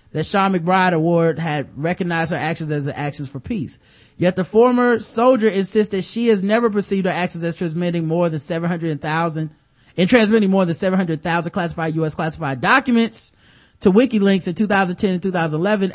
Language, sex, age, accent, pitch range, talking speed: English, male, 30-49, American, 160-200 Hz, 170 wpm